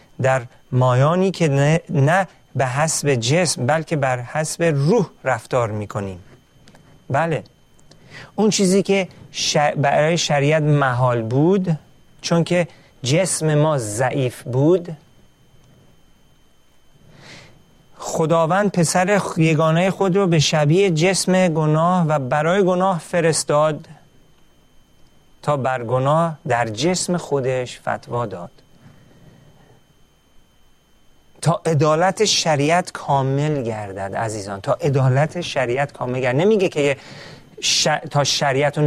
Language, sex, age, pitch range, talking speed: Persian, male, 40-59, 130-165 Hz, 100 wpm